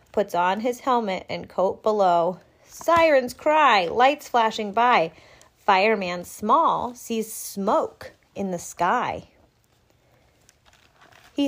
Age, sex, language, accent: 30-49, female, English, American